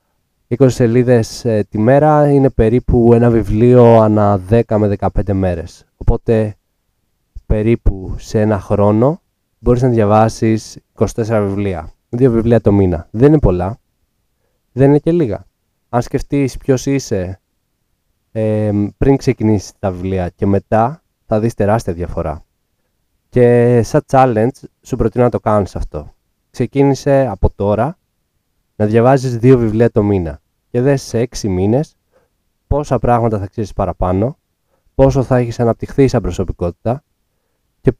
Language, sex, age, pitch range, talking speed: English, male, 20-39, 100-125 Hz, 135 wpm